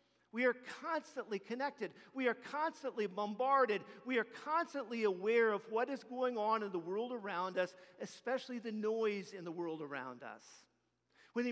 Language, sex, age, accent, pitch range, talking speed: English, male, 50-69, American, 180-230 Hz, 165 wpm